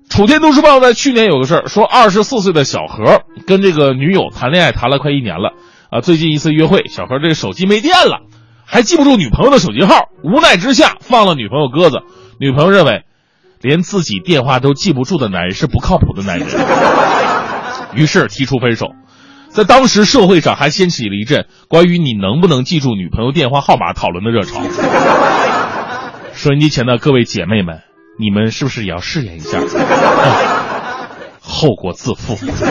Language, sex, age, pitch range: Chinese, male, 20-39, 120-190 Hz